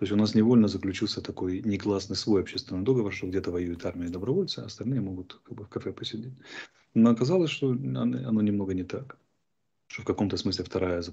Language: Russian